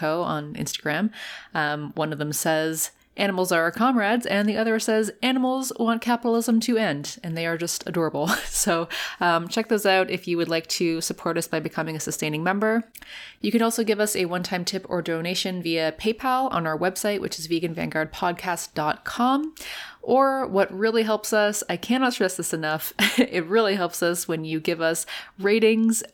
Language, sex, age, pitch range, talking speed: English, female, 20-39, 165-215 Hz, 180 wpm